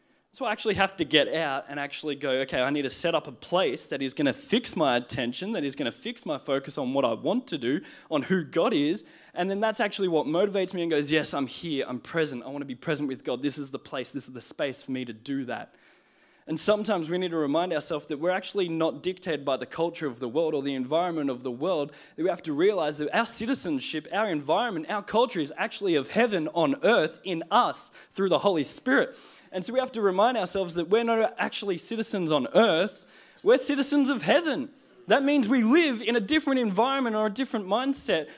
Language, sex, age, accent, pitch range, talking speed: English, male, 20-39, Australian, 165-245 Hz, 240 wpm